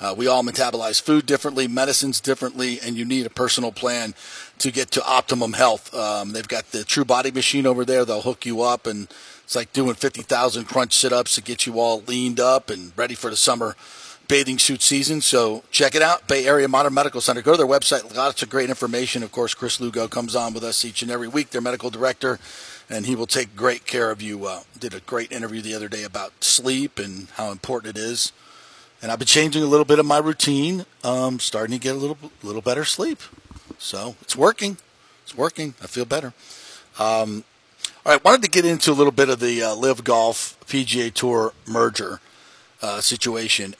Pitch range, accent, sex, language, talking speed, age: 110-135 Hz, American, male, English, 210 wpm, 40-59